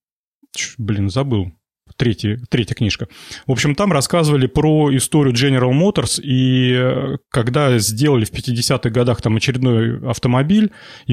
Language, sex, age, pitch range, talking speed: Russian, male, 30-49, 120-155 Hz, 120 wpm